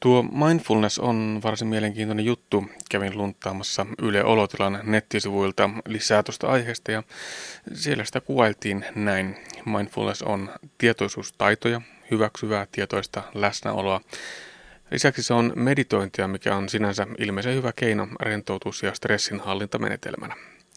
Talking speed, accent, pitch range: 110 wpm, native, 100-110 Hz